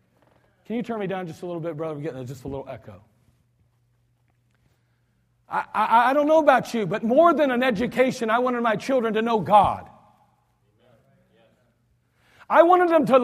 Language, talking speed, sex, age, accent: English, 170 wpm, male, 40-59, American